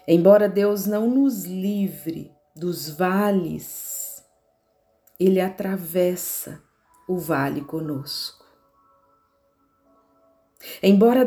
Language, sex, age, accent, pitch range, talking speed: Portuguese, female, 40-59, Brazilian, 160-215 Hz, 70 wpm